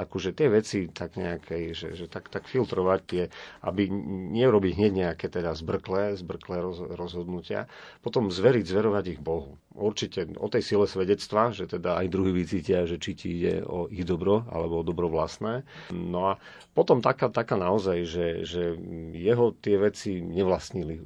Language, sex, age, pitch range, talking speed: Slovak, male, 40-59, 85-95 Hz, 160 wpm